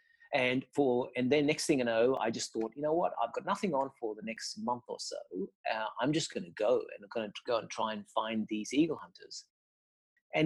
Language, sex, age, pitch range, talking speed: English, male, 40-59, 110-145 Hz, 245 wpm